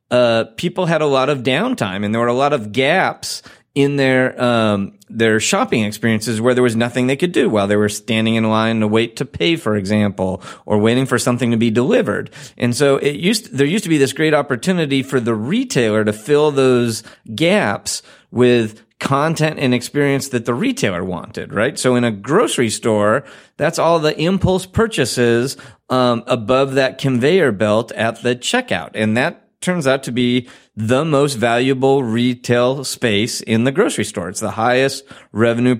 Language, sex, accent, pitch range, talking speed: English, male, American, 110-140 Hz, 185 wpm